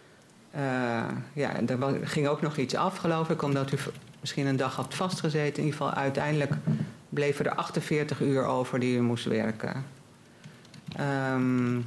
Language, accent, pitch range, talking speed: Dutch, Dutch, 130-155 Hz, 155 wpm